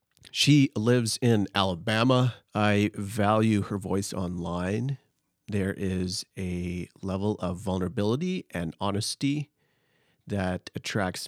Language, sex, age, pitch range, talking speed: English, male, 40-59, 100-125 Hz, 100 wpm